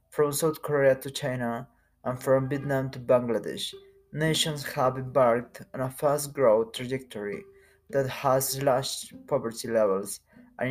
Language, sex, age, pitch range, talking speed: English, male, 20-39, 120-140 Hz, 135 wpm